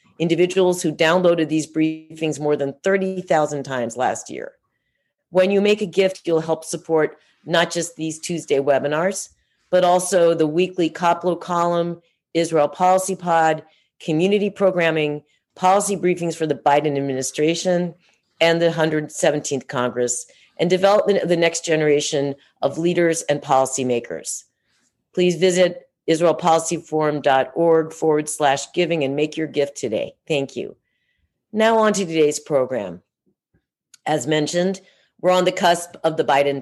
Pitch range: 150-180 Hz